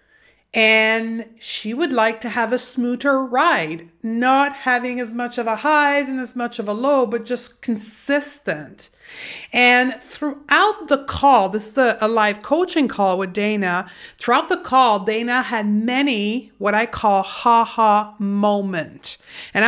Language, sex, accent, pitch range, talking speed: English, female, American, 210-265 Hz, 155 wpm